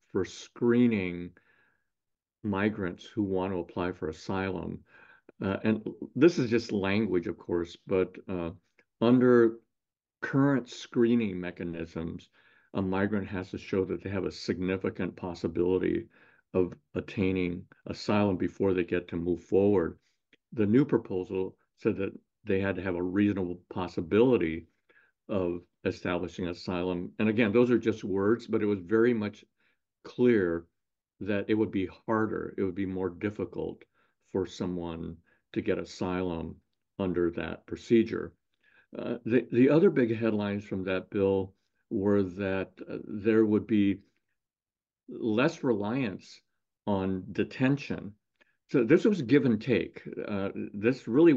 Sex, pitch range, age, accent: male, 90-110 Hz, 50-69, American